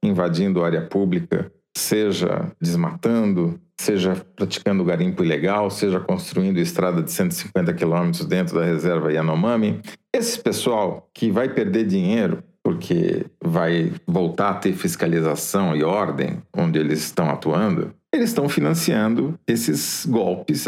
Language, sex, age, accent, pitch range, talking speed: Portuguese, male, 40-59, Brazilian, 110-180 Hz, 125 wpm